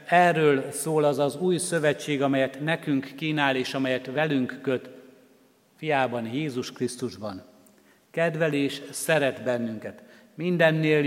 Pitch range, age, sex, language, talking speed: 125-155 Hz, 60-79, male, Hungarian, 110 wpm